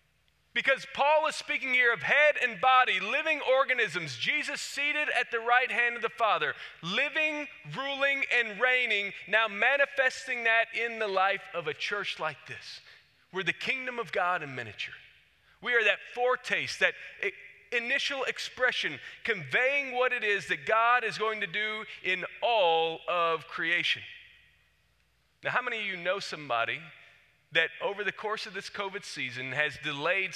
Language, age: English, 40-59